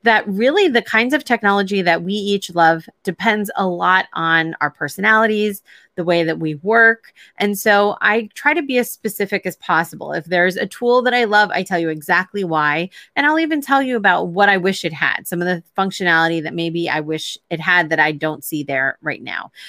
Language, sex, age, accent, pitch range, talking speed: English, female, 30-49, American, 165-215 Hz, 215 wpm